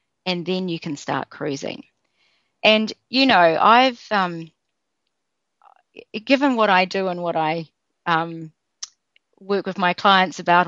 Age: 40-59